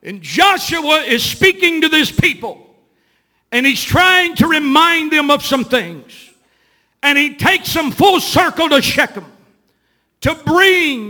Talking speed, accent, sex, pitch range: 140 wpm, American, male, 265-345 Hz